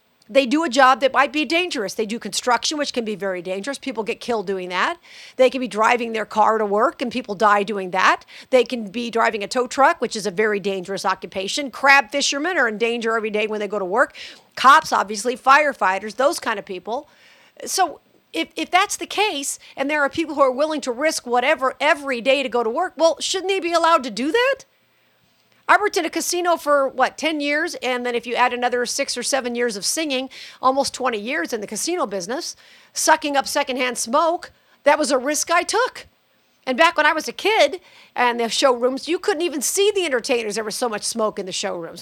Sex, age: female, 50-69